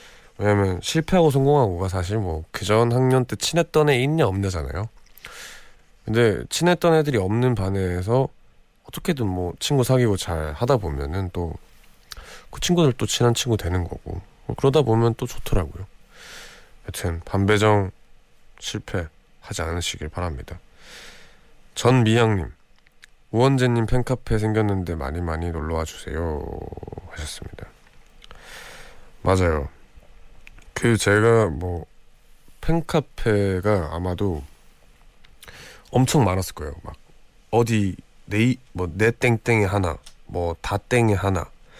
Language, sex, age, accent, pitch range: Korean, male, 20-39, native, 90-120 Hz